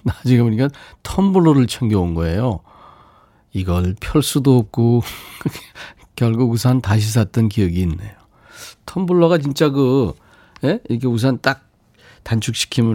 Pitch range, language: 100-145 Hz, Korean